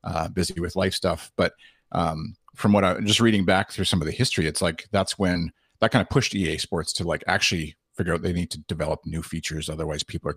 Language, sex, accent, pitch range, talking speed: English, male, American, 80-100 Hz, 260 wpm